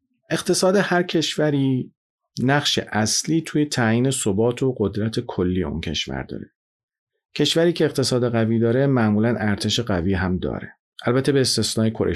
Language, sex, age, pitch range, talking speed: Persian, male, 40-59, 100-130 Hz, 140 wpm